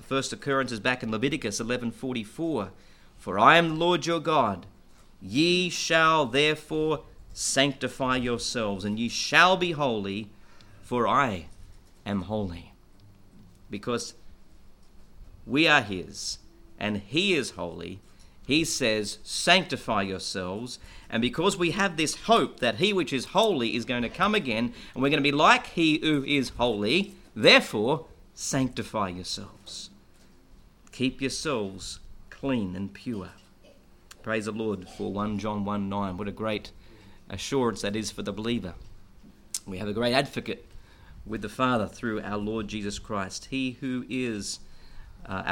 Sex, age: male, 40-59